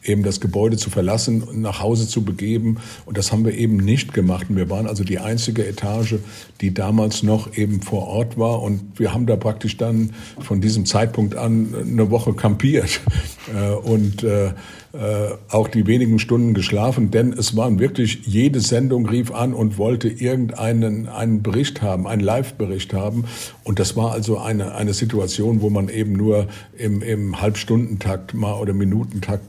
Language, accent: German, German